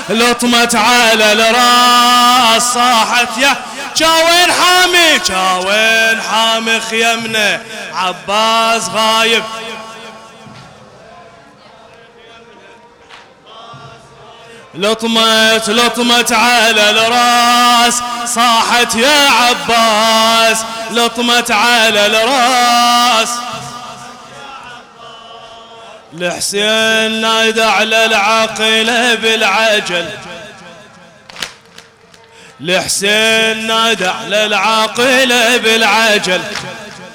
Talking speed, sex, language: 40 wpm, male, English